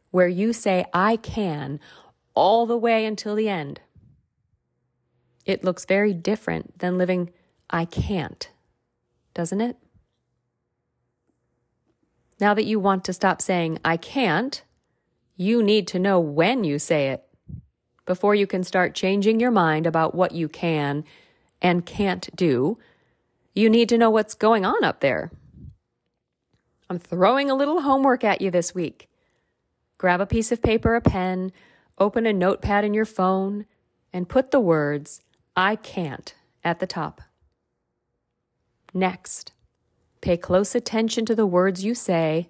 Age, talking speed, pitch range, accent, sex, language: 40-59, 145 wpm, 165-215 Hz, American, female, English